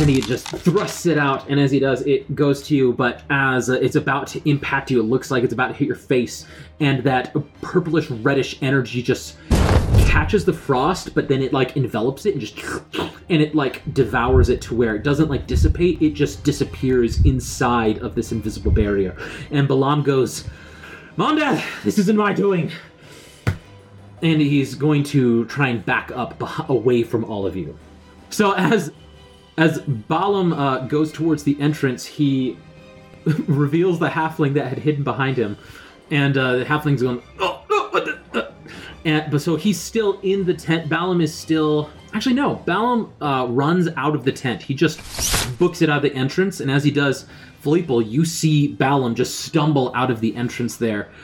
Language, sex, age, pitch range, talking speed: English, male, 30-49, 120-155 Hz, 185 wpm